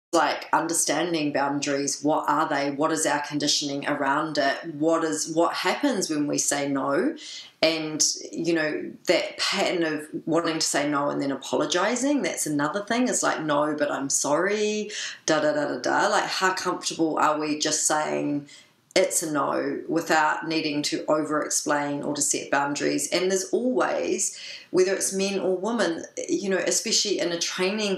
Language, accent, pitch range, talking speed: English, Australian, 155-185 Hz, 170 wpm